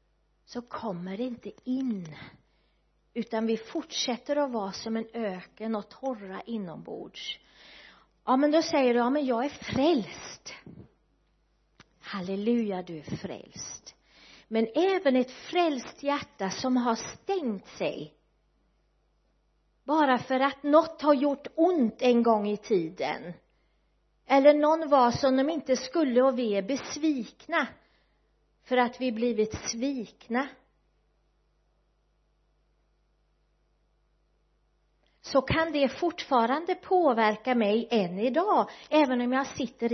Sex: female